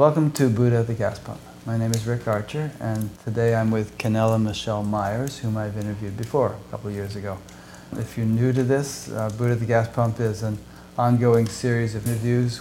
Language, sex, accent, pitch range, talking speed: English, male, American, 105-120 Hz, 215 wpm